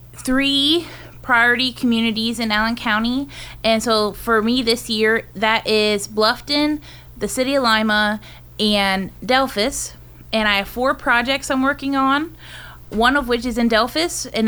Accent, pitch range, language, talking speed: American, 210-240 Hz, English, 150 wpm